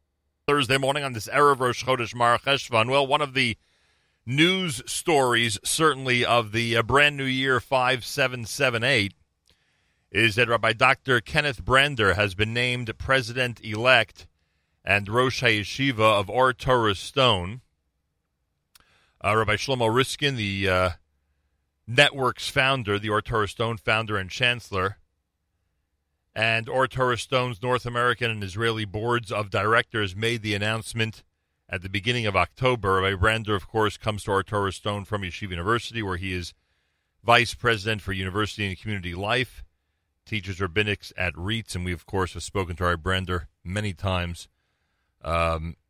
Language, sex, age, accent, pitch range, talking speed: English, male, 40-59, American, 90-120 Hz, 145 wpm